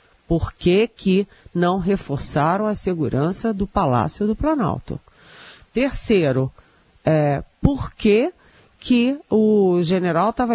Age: 40-59